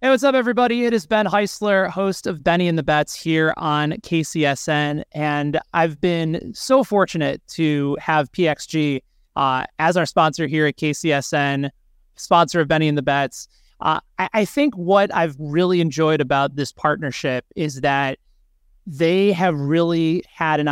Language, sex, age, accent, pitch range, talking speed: English, male, 30-49, American, 150-190 Hz, 160 wpm